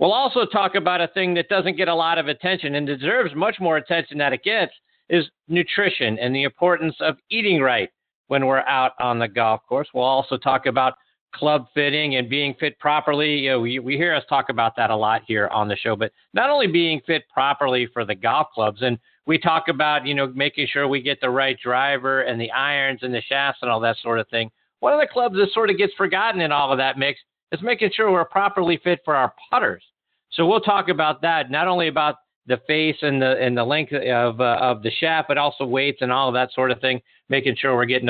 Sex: male